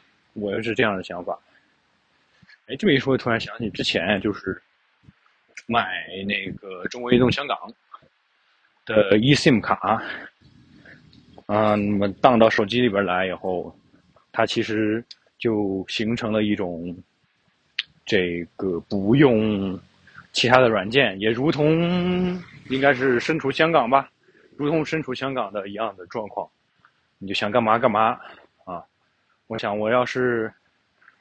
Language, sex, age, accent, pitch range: Chinese, male, 20-39, native, 110-145 Hz